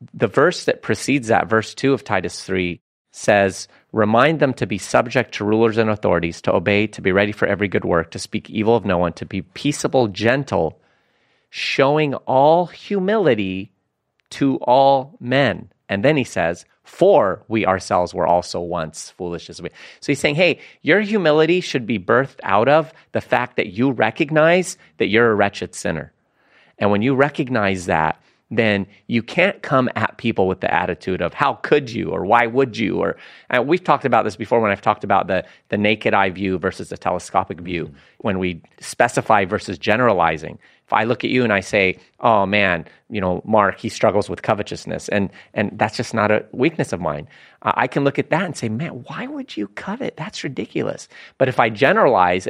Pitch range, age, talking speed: 95-135 Hz, 30-49, 195 wpm